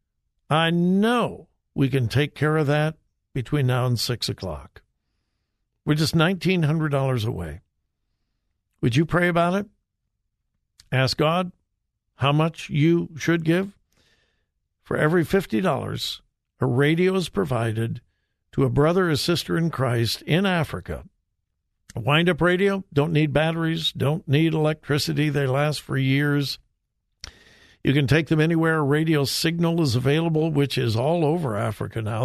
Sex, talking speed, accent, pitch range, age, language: male, 135 wpm, American, 120-165 Hz, 60-79, English